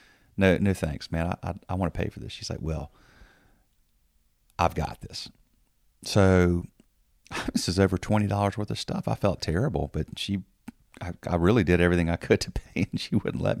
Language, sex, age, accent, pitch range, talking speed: English, male, 40-59, American, 80-100 Hz, 195 wpm